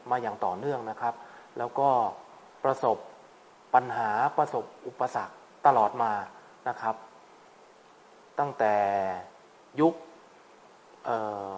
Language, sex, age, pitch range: Thai, male, 20-39, 120-155 Hz